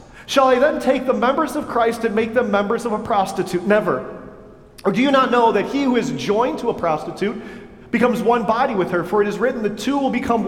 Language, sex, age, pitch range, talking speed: English, male, 40-59, 210-260 Hz, 240 wpm